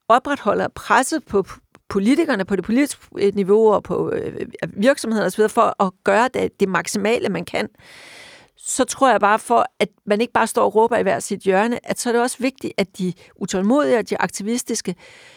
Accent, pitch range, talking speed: native, 195-245 Hz, 195 wpm